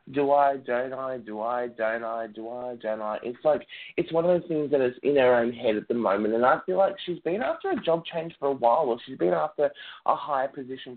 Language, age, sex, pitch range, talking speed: English, 20-39, male, 120-165 Hz, 265 wpm